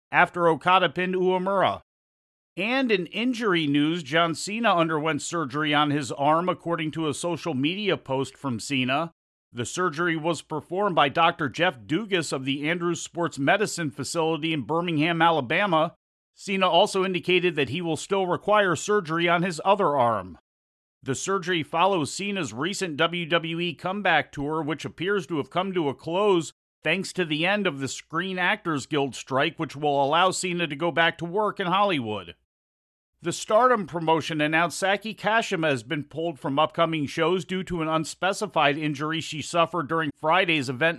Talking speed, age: 165 wpm, 40-59